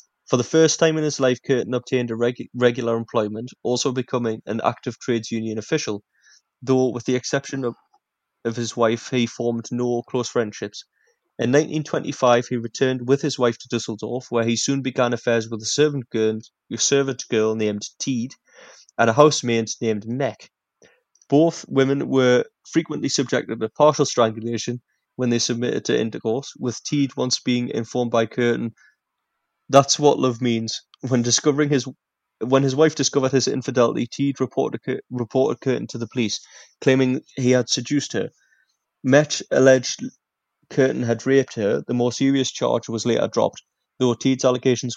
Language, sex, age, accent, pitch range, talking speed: English, male, 20-39, British, 115-135 Hz, 165 wpm